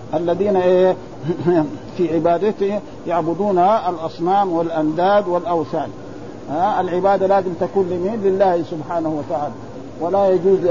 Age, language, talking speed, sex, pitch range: 50-69, Arabic, 90 wpm, male, 165-195 Hz